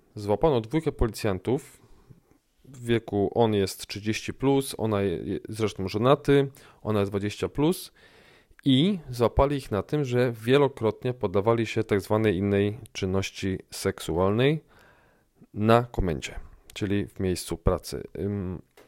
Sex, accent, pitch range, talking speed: male, native, 100-125 Hz, 110 wpm